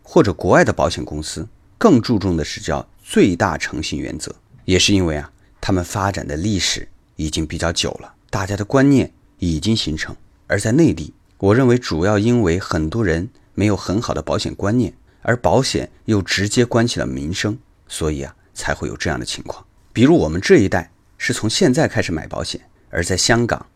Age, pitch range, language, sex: 30-49, 80-105 Hz, Chinese, male